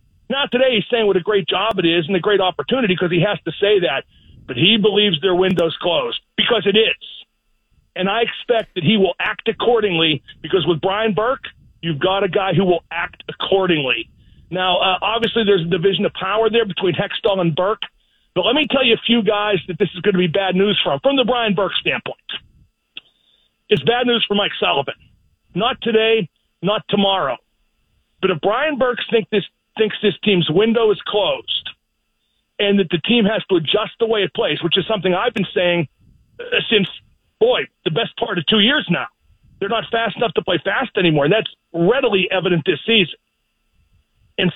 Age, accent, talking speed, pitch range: 40-59, American, 200 wpm, 185-230 Hz